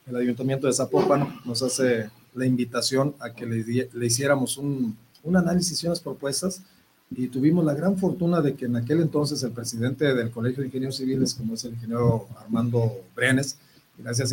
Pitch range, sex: 120-145 Hz, male